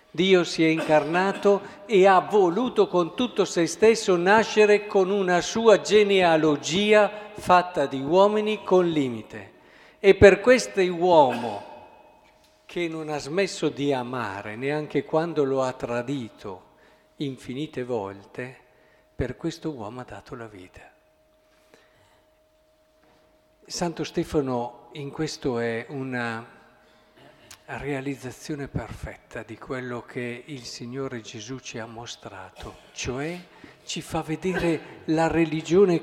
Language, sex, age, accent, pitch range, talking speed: Italian, male, 50-69, native, 135-205 Hz, 115 wpm